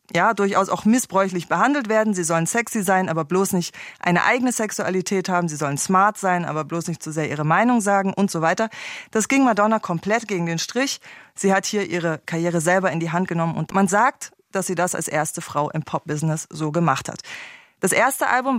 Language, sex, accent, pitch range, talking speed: German, female, German, 165-215 Hz, 215 wpm